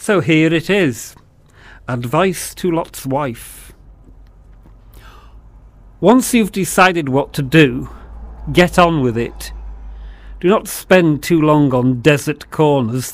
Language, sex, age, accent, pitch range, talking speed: English, male, 40-59, British, 125-175 Hz, 120 wpm